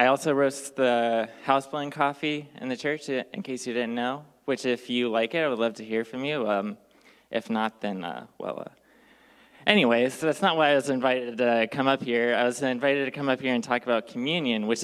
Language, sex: English, male